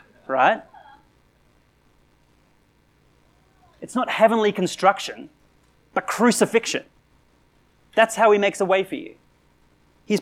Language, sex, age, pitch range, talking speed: English, male, 30-49, 165-250 Hz, 95 wpm